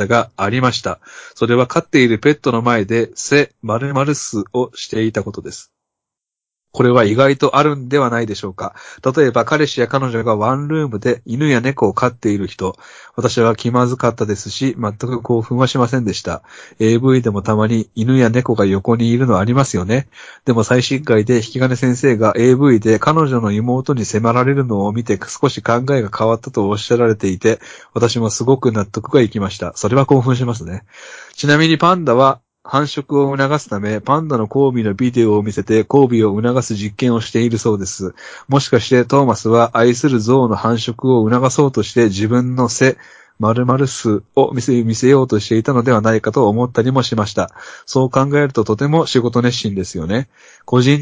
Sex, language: male, Japanese